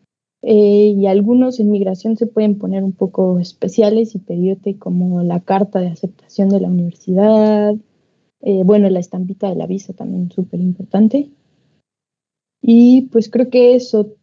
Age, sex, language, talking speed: 20-39, female, Spanish, 150 wpm